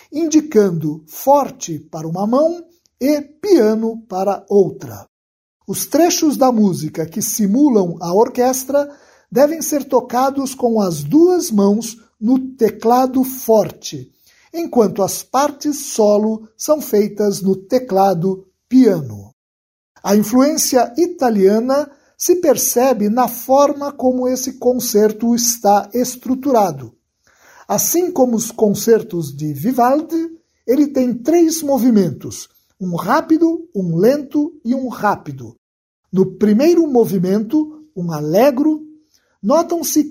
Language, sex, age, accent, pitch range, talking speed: Portuguese, male, 60-79, Brazilian, 195-290 Hz, 105 wpm